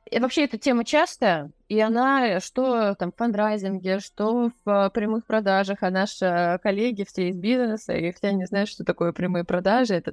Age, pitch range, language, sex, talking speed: 20-39, 185-230 Hz, Russian, female, 185 wpm